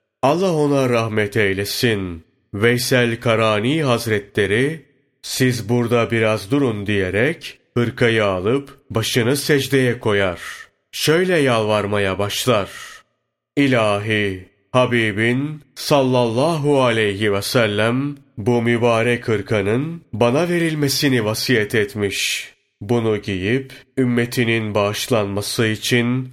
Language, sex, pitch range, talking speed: Turkish, male, 105-135 Hz, 85 wpm